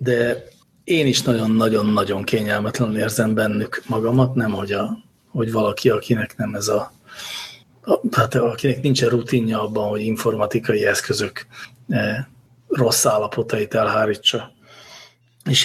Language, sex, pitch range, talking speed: English, male, 110-130 Hz, 110 wpm